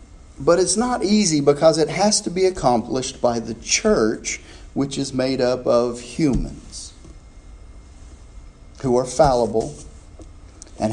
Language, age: English, 40-59